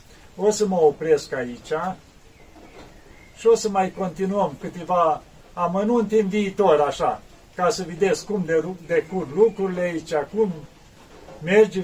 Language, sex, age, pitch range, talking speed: Romanian, male, 50-69, 150-195 Hz, 130 wpm